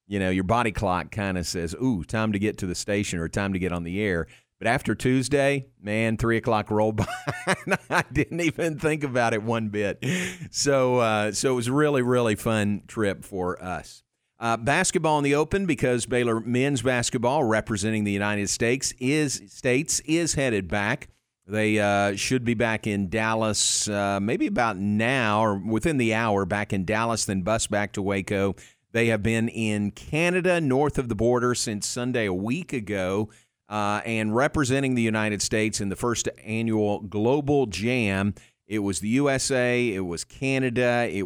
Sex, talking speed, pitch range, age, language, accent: male, 185 wpm, 100-125 Hz, 50-69, English, American